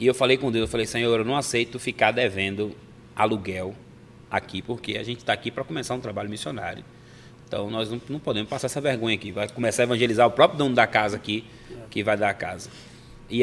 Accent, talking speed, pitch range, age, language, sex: Brazilian, 225 wpm, 110-130 Hz, 20-39, Portuguese, male